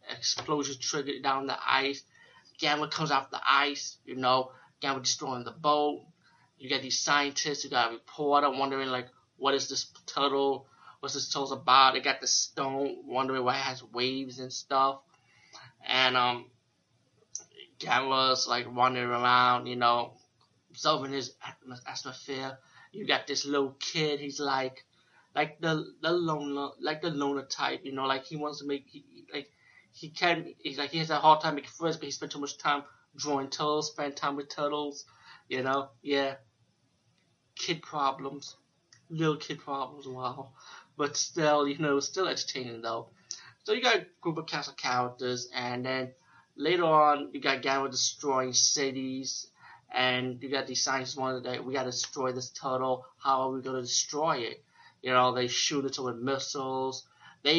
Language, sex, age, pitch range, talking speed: English, male, 20-39, 130-145 Hz, 170 wpm